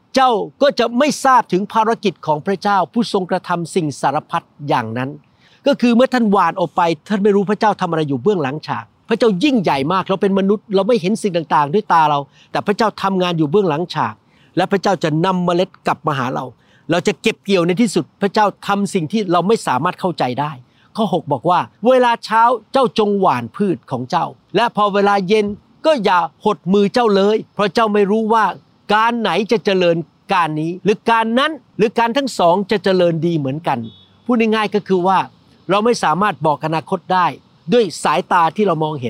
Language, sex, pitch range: Thai, male, 165-215 Hz